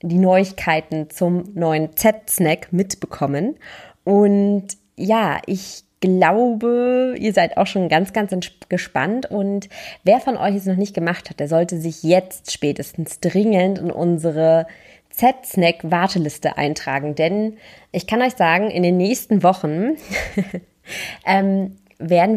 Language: German